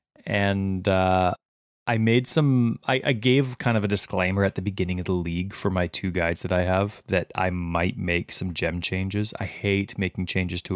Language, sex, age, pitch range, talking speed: English, male, 20-39, 90-100 Hz, 205 wpm